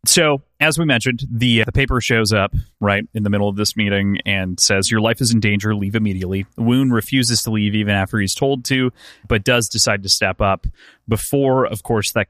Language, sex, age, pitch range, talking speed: English, male, 30-49, 95-115 Hz, 215 wpm